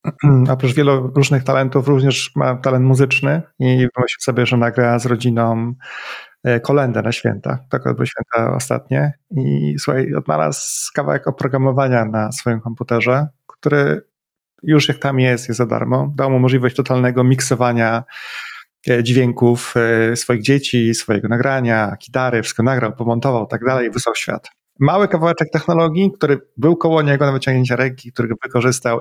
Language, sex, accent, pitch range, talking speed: Polish, male, native, 115-135 Hz, 140 wpm